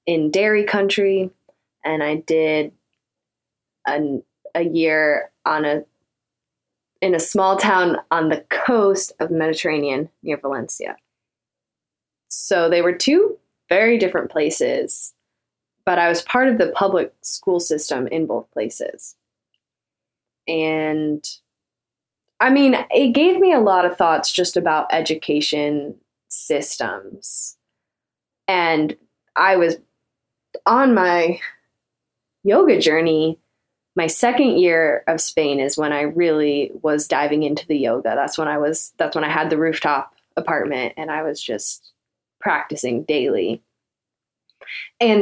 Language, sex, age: English, female, 20-39